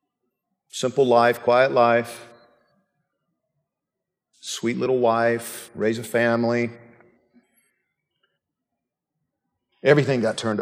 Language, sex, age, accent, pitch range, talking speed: English, male, 50-69, American, 110-140 Hz, 75 wpm